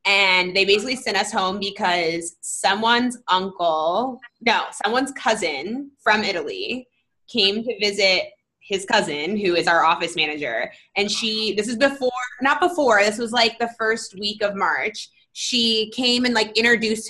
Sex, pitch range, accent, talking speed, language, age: female, 175-225 Hz, American, 155 wpm, English, 20-39